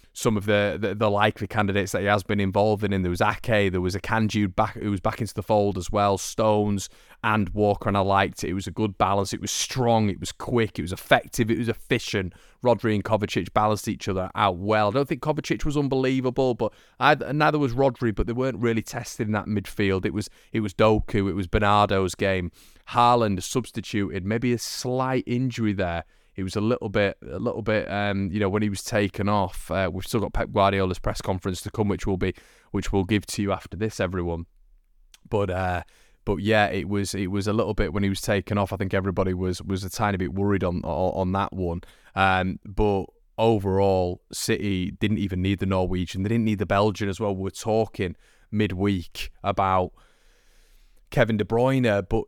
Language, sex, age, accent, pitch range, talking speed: English, male, 30-49, British, 95-110 Hz, 215 wpm